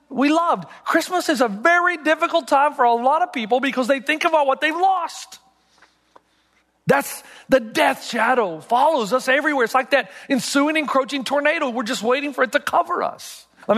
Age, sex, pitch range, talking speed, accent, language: 40-59, male, 180-260 Hz, 185 wpm, American, English